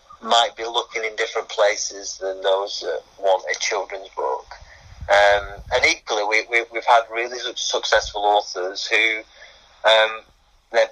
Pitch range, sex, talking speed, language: 105-115 Hz, male, 145 wpm, English